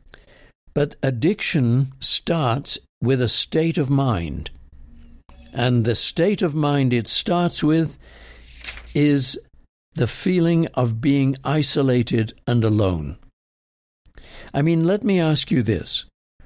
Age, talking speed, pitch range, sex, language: 60-79, 115 wpm, 110-150 Hz, male, English